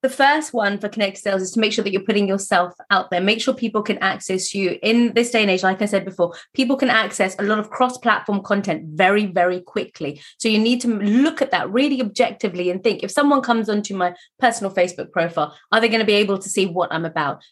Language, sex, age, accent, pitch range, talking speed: English, female, 30-49, British, 185-225 Hz, 245 wpm